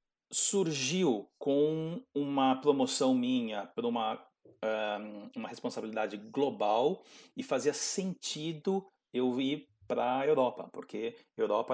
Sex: male